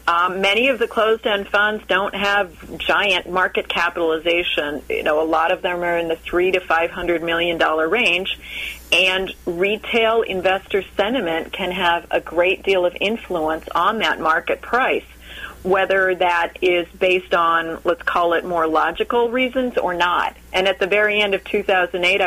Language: English